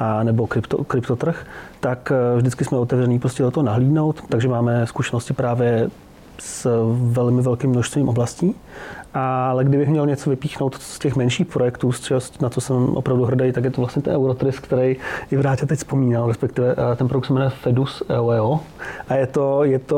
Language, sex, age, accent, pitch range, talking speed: Czech, male, 30-49, native, 125-145 Hz, 175 wpm